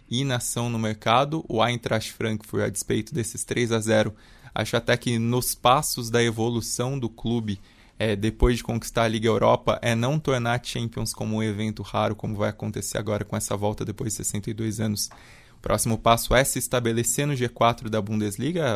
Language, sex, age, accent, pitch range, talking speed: Portuguese, male, 20-39, Brazilian, 110-125 Hz, 190 wpm